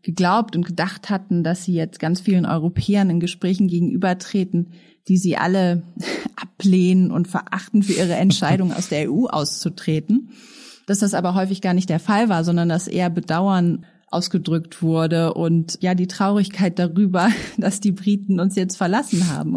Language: German